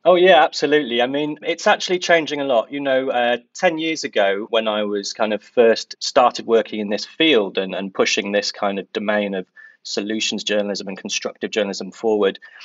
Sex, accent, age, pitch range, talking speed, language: male, British, 30-49, 100-145 Hz, 195 wpm, English